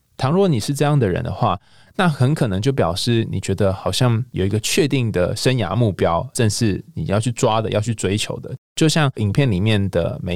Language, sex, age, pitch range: Chinese, male, 20-39, 100-135 Hz